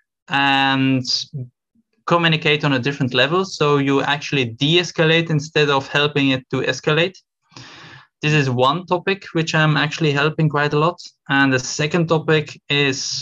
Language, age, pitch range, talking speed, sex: English, 20-39, 130-155 Hz, 145 wpm, male